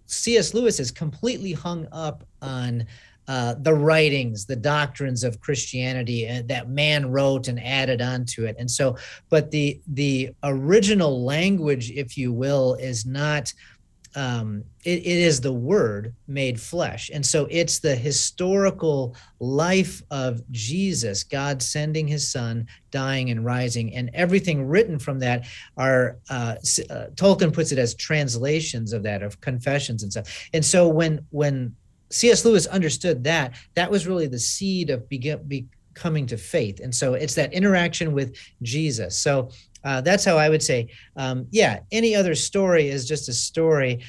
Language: English